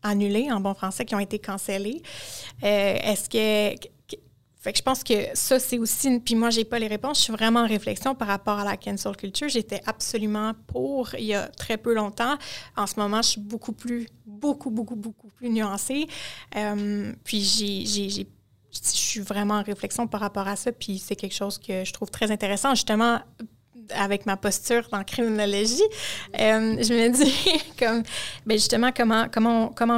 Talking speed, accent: 200 wpm, Canadian